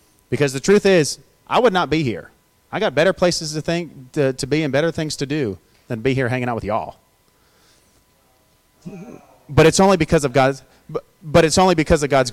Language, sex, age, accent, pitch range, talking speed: English, male, 30-49, American, 130-170 Hz, 205 wpm